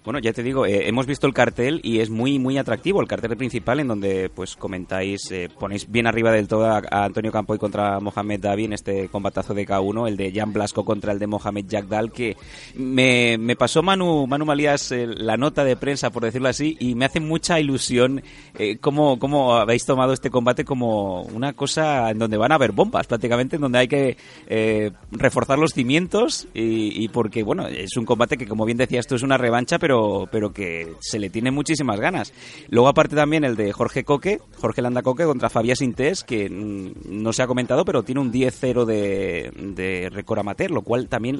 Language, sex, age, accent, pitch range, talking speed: Spanish, male, 30-49, Spanish, 105-135 Hz, 210 wpm